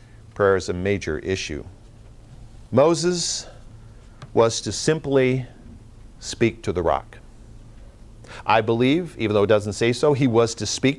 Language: English